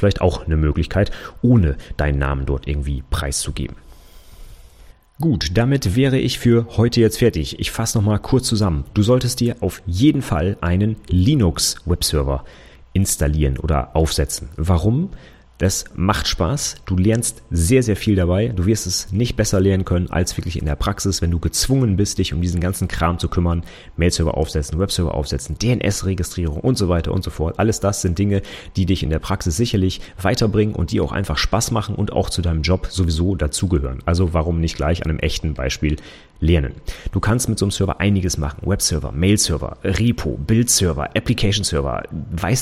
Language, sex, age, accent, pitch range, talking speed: German, male, 30-49, German, 80-110 Hz, 180 wpm